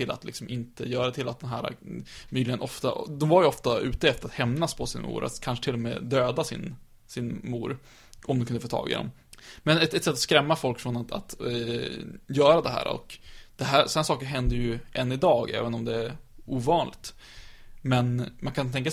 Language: Swedish